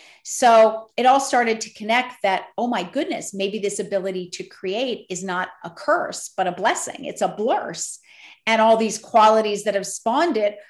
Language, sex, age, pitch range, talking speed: English, female, 40-59, 180-215 Hz, 185 wpm